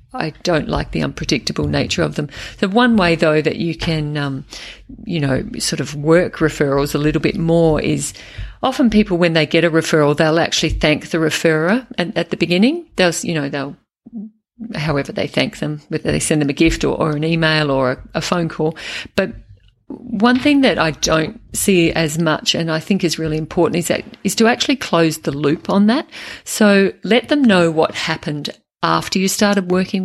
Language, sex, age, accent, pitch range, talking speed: English, female, 50-69, Australian, 155-200 Hz, 200 wpm